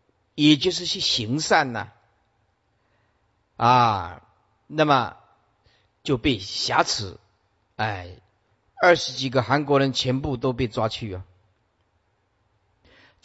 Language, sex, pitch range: Chinese, male, 100-135 Hz